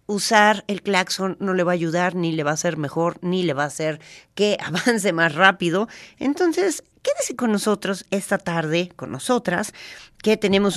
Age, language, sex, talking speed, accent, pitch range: 40-59, Spanish, female, 185 wpm, Mexican, 165-205 Hz